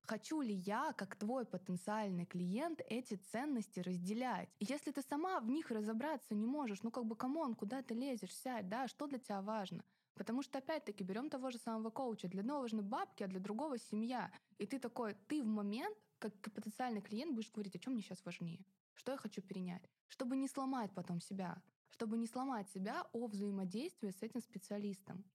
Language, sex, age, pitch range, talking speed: Russian, female, 20-39, 190-235 Hz, 190 wpm